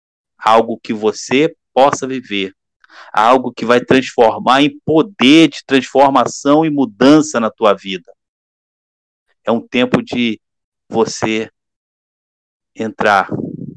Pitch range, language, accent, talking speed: 95-125 Hz, Portuguese, Brazilian, 105 wpm